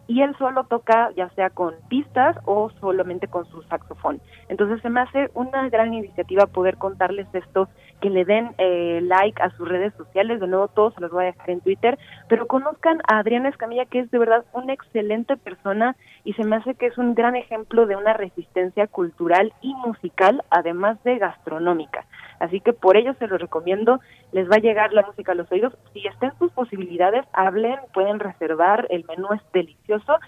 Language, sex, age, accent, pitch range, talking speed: Spanish, female, 30-49, Mexican, 180-230 Hz, 195 wpm